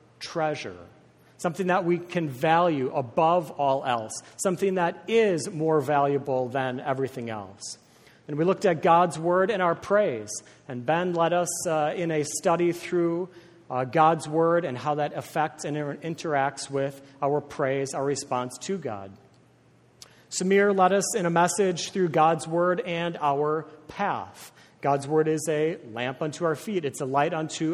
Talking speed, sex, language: 160 wpm, male, English